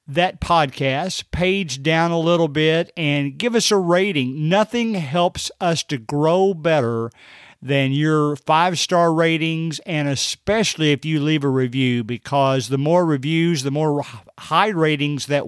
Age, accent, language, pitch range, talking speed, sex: 50-69, American, English, 145-185 Hz, 145 wpm, male